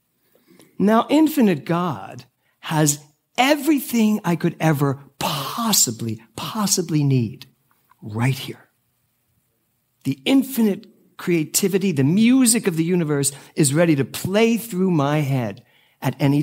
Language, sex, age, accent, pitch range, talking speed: English, male, 50-69, American, 120-175 Hz, 110 wpm